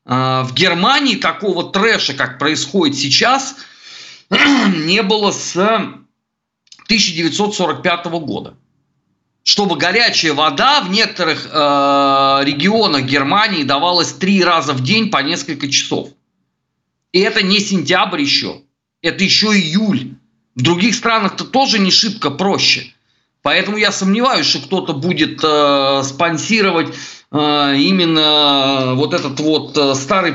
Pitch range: 140-200 Hz